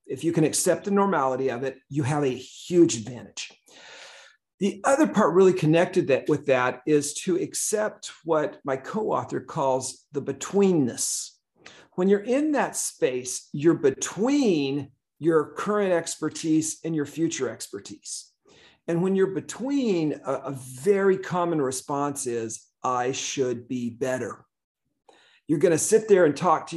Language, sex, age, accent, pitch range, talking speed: English, male, 40-59, American, 135-180 Hz, 145 wpm